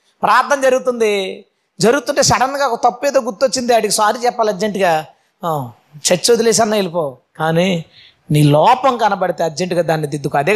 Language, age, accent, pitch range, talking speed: Telugu, 20-39, native, 195-265 Hz, 135 wpm